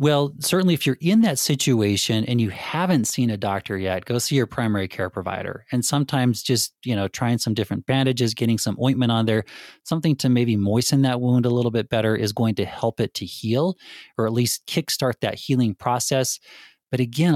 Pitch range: 105-135 Hz